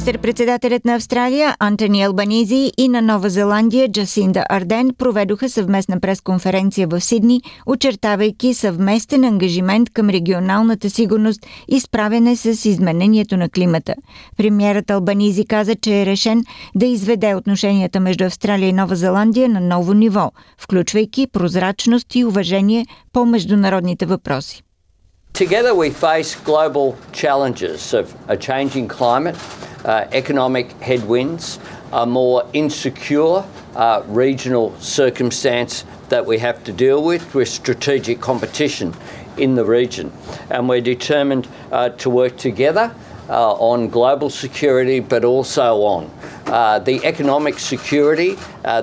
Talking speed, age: 125 wpm, 50-69